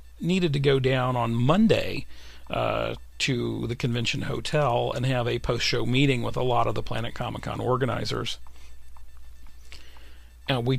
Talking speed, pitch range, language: 150 wpm, 90-140 Hz, English